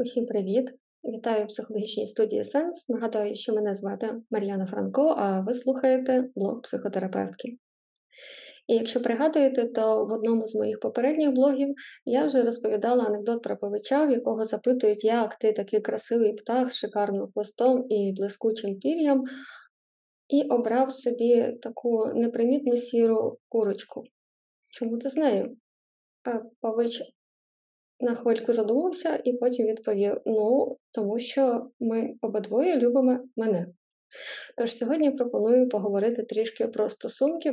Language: Ukrainian